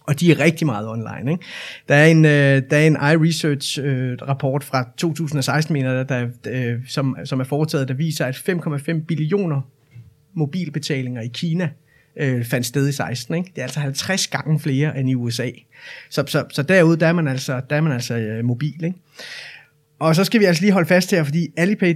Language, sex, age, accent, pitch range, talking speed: Danish, male, 30-49, native, 135-165 Hz, 190 wpm